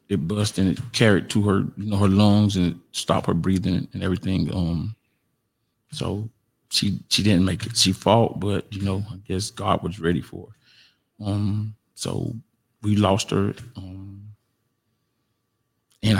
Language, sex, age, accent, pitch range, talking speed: English, male, 30-49, American, 95-115 Hz, 165 wpm